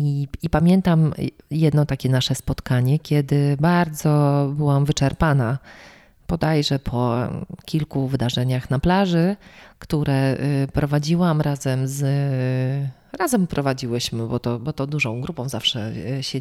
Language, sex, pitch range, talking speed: Polish, female, 140-175 Hz, 115 wpm